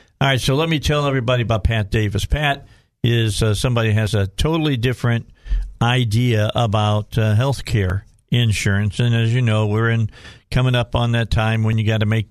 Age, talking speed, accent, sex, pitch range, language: 50-69, 200 wpm, American, male, 110-125 Hz, English